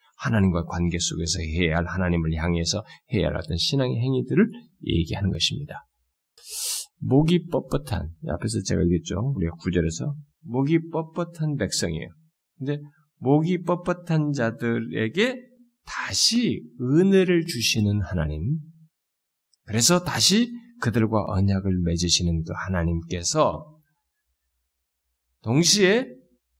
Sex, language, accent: male, Korean, native